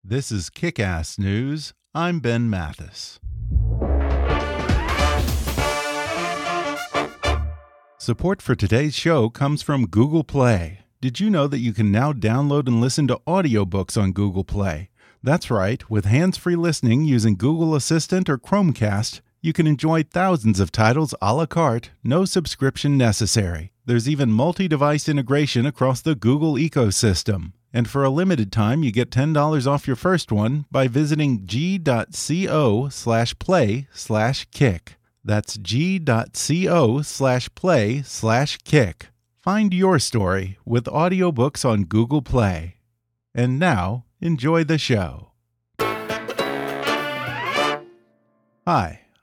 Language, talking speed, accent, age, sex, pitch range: English, 120 wpm, American, 40-59, male, 105-150 Hz